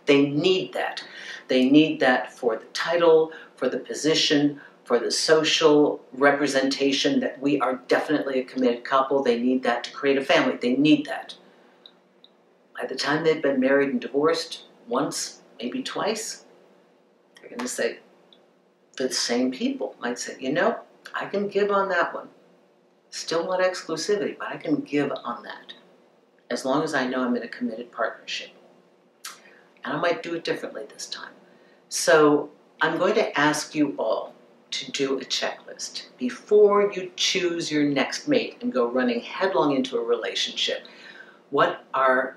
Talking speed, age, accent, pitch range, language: 160 wpm, 50-69, American, 130-185 Hz, English